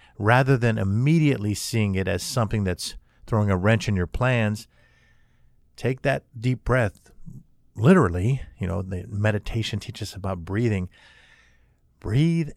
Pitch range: 95-120 Hz